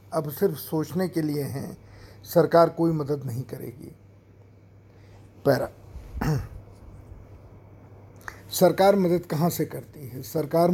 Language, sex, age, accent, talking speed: Hindi, male, 50-69, native, 105 wpm